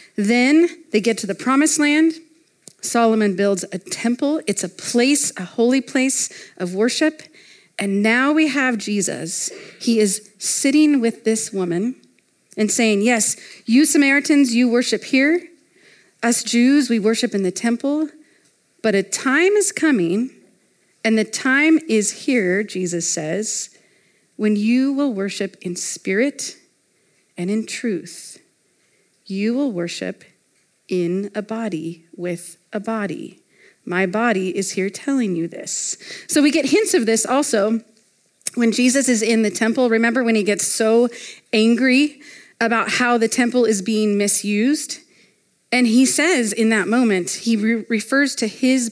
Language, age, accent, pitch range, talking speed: English, 40-59, American, 200-265 Hz, 145 wpm